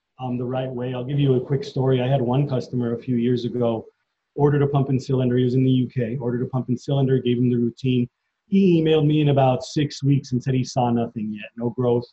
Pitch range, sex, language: 125-160 Hz, male, English